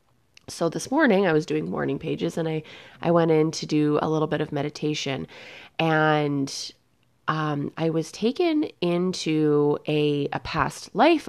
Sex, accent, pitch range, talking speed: female, American, 145-180 Hz, 160 wpm